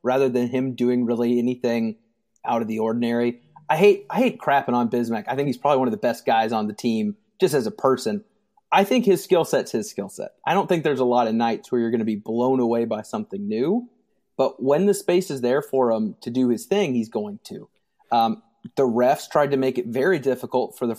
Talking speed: 245 wpm